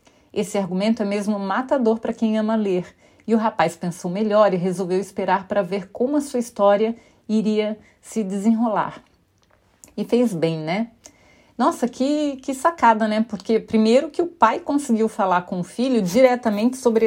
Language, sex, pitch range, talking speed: Portuguese, female, 180-230 Hz, 165 wpm